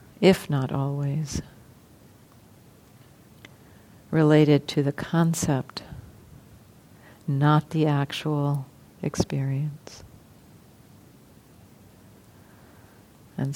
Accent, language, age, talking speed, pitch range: American, English, 50-69, 55 wpm, 130-170 Hz